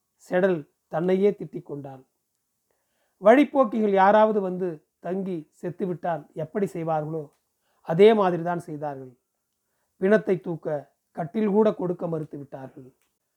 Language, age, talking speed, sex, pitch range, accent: Tamil, 40-59, 90 wpm, male, 155-205 Hz, native